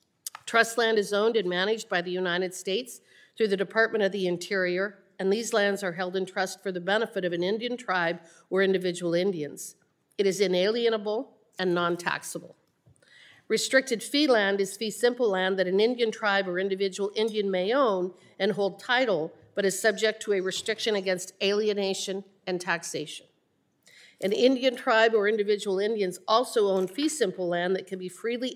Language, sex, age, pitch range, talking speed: English, female, 50-69, 185-220 Hz, 170 wpm